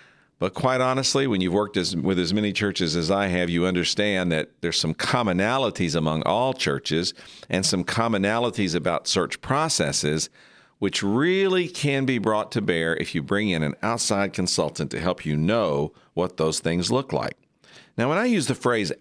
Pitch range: 80-105 Hz